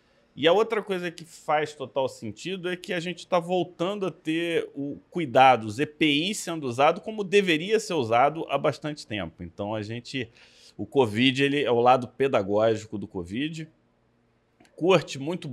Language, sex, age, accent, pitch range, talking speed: Portuguese, male, 30-49, Brazilian, 110-165 Hz, 165 wpm